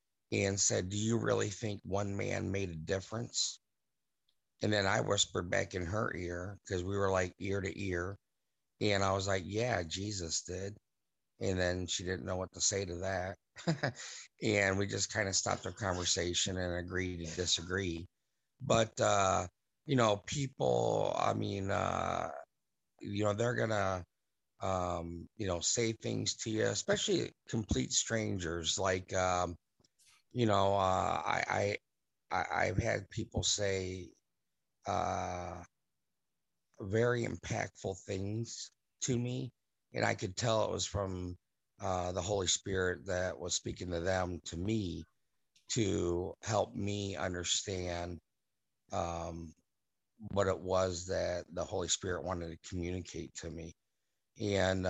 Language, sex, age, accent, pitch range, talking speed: English, male, 50-69, American, 90-105 Hz, 140 wpm